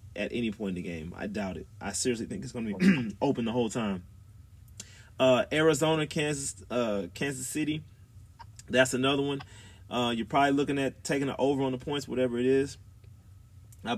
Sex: male